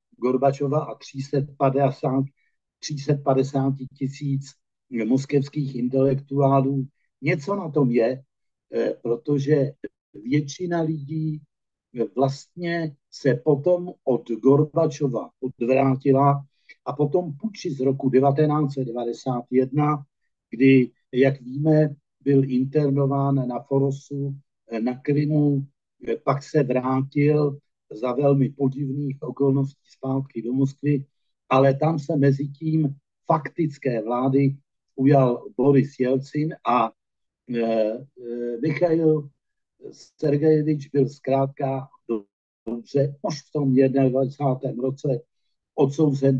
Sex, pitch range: male, 130-145 Hz